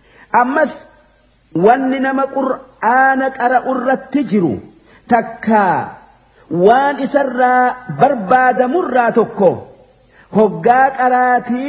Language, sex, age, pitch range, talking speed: Arabic, male, 50-69, 220-250 Hz, 65 wpm